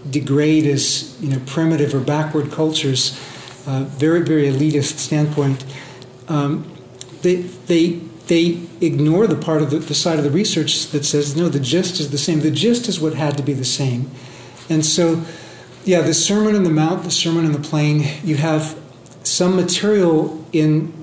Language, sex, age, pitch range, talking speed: English, male, 40-59, 135-165 Hz, 175 wpm